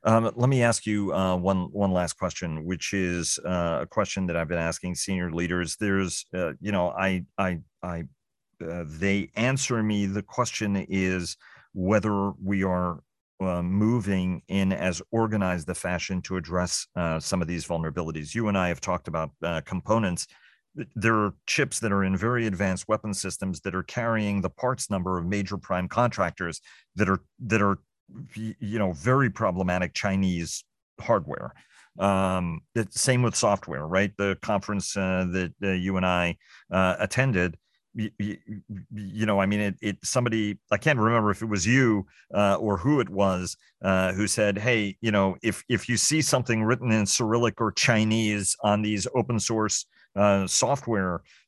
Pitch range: 90-110 Hz